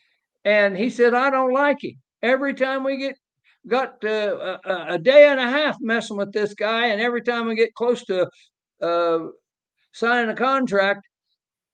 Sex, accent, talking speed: male, American, 170 wpm